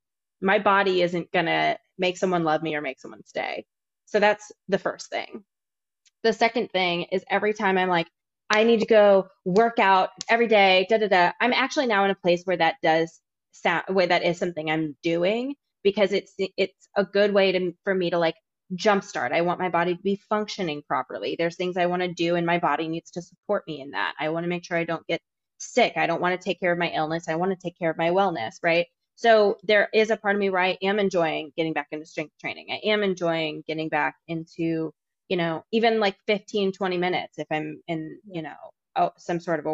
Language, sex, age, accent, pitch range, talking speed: English, female, 20-39, American, 165-200 Hz, 235 wpm